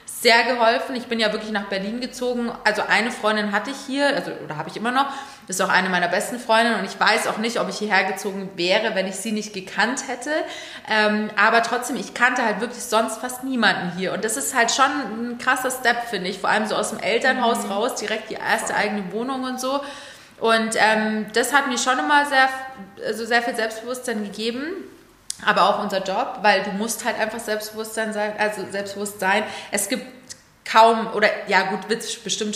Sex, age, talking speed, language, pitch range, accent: female, 30-49, 210 wpm, German, 185-230 Hz, German